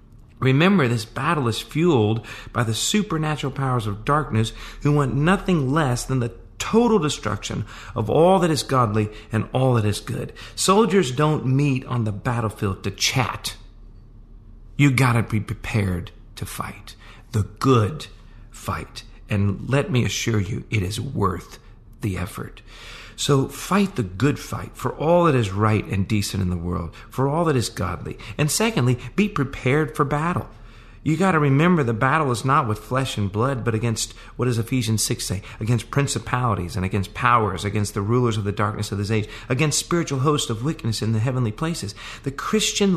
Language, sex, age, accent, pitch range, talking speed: English, male, 40-59, American, 110-140 Hz, 175 wpm